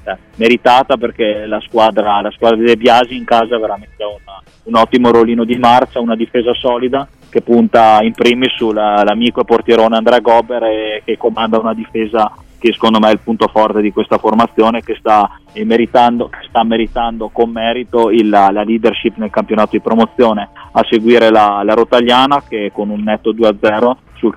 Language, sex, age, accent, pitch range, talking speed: Italian, male, 20-39, native, 105-120 Hz, 170 wpm